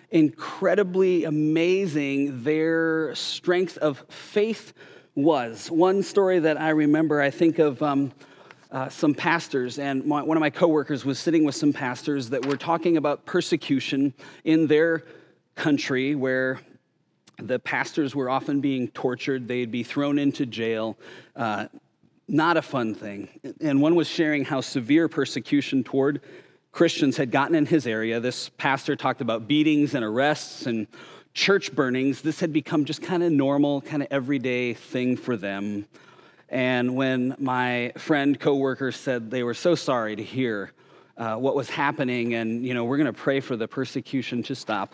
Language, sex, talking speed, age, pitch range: English, male, 160 wpm, 30-49, 125-155 Hz